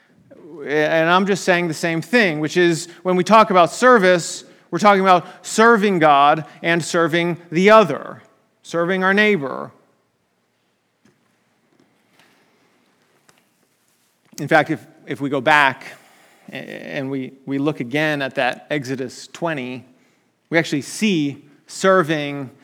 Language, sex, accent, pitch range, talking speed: English, male, American, 145-195 Hz, 120 wpm